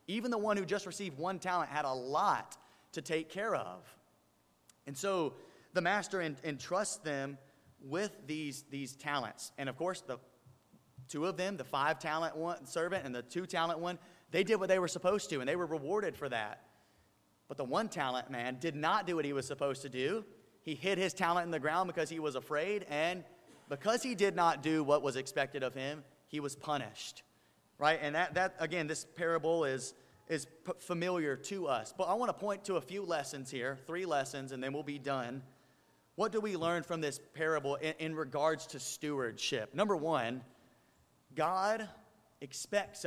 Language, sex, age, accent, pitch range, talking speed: English, male, 30-49, American, 135-175 Hz, 190 wpm